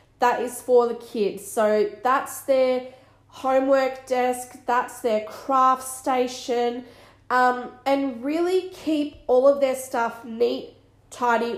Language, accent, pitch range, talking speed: English, Australian, 220-260 Hz, 125 wpm